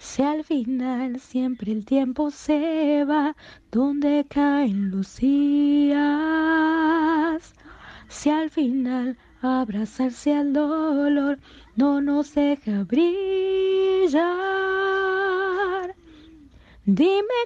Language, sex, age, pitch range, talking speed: English, female, 30-49, 255-320 Hz, 75 wpm